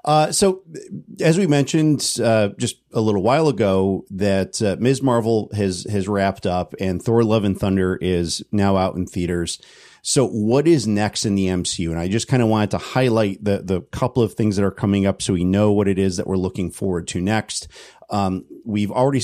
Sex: male